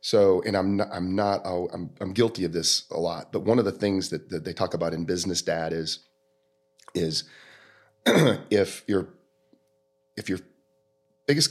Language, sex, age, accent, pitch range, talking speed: English, male, 30-49, American, 90-110 Hz, 170 wpm